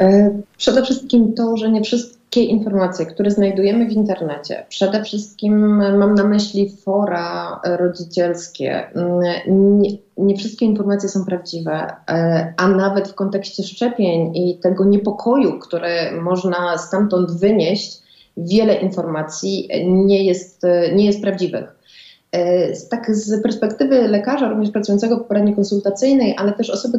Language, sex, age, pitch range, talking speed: Polish, female, 30-49, 190-220 Hz, 120 wpm